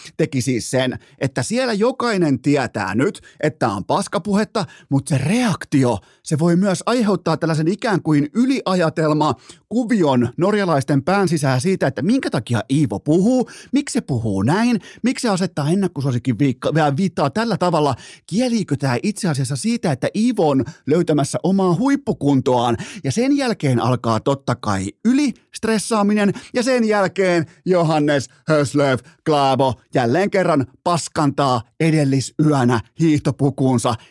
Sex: male